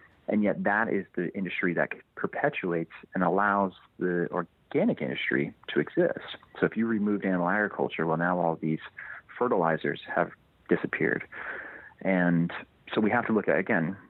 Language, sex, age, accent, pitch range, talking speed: English, male, 40-59, American, 85-95 Hz, 155 wpm